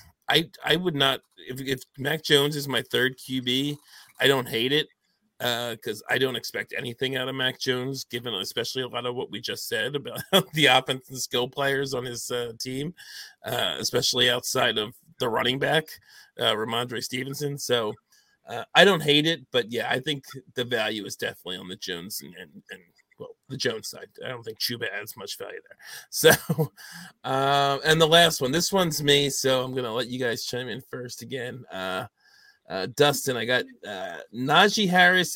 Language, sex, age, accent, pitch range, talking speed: English, male, 30-49, American, 125-155 Hz, 195 wpm